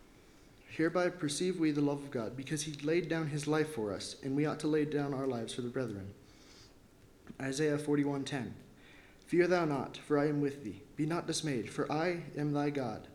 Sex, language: male, English